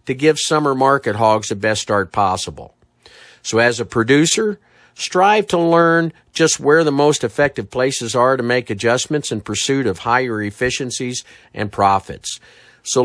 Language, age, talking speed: English, 50-69, 155 wpm